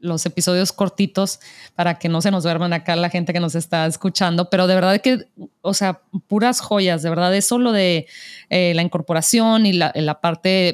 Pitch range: 175-205 Hz